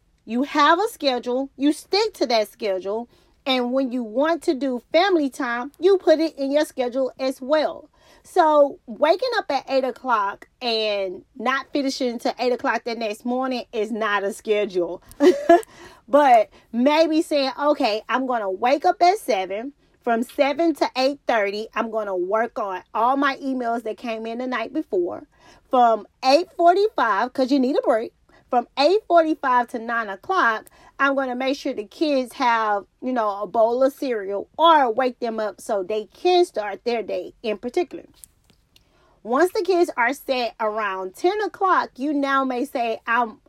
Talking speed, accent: 170 wpm, American